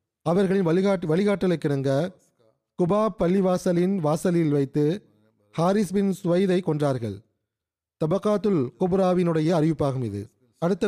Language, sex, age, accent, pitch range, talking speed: Tamil, male, 30-49, native, 145-190 Hz, 90 wpm